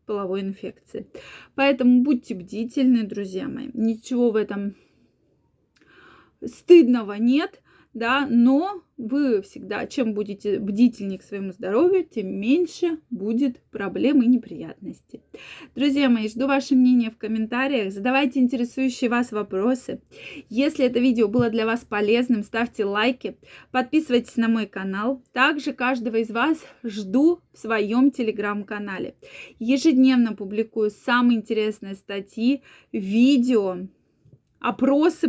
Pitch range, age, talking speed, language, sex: 205-255 Hz, 20-39, 115 wpm, Russian, female